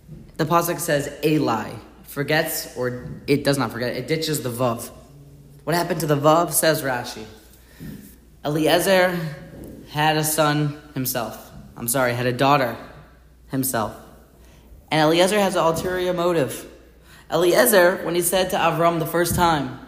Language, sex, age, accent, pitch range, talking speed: English, male, 30-49, American, 135-180 Hz, 145 wpm